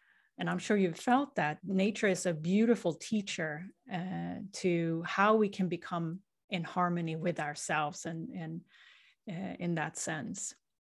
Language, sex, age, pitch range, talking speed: English, female, 30-49, 170-215 Hz, 150 wpm